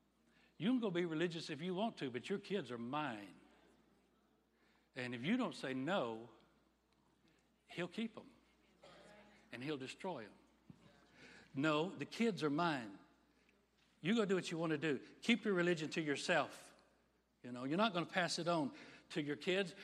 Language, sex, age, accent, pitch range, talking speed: English, male, 60-79, American, 150-200 Hz, 170 wpm